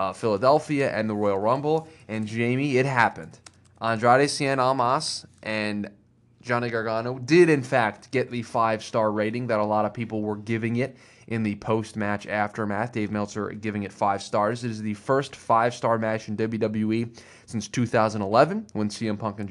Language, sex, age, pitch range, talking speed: English, male, 20-39, 110-125 Hz, 170 wpm